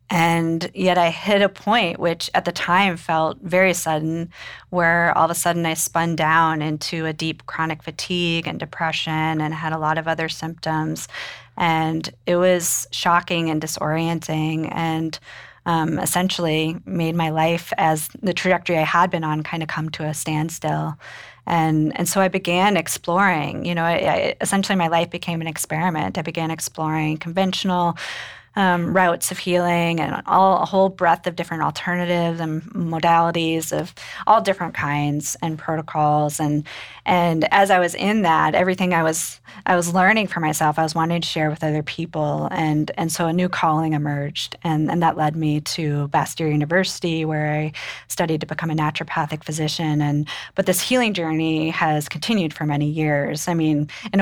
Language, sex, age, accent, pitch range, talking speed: English, female, 30-49, American, 155-175 Hz, 175 wpm